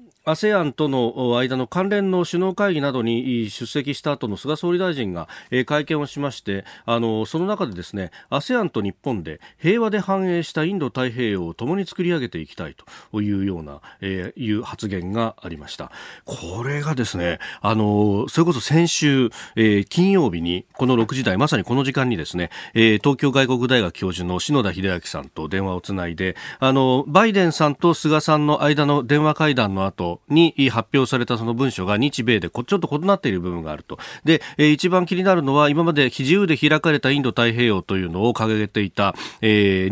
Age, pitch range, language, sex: 40-59, 105-160 Hz, Japanese, male